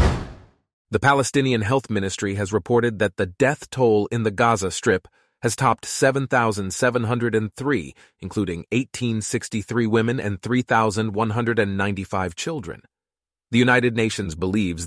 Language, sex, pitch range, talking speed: English, male, 90-120 Hz, 110 wpm